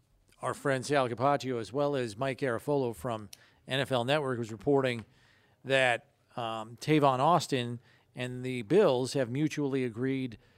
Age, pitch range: 40-59, 120-150 Hz